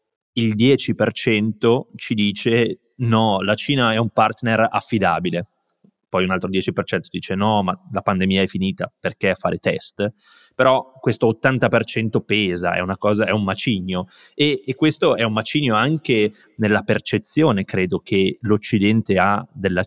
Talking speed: 150 wpm